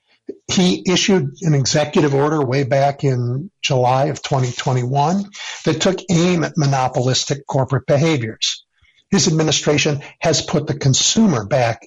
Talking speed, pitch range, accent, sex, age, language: 125 wpm, 130-175 Hz, American, male, 50-69, English